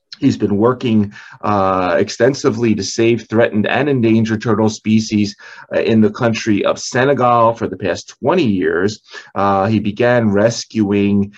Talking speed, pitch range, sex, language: 140 wpm, 95-110 Hz, male, English